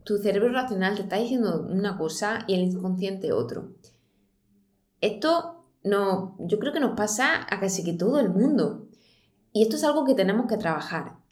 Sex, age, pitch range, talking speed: female, 20-39, 185-240 Hz, 170 wpm